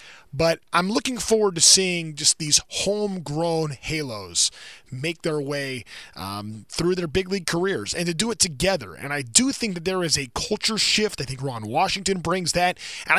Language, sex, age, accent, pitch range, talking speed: English, male, 20-39, American, 145-190 Hz, 185 wpm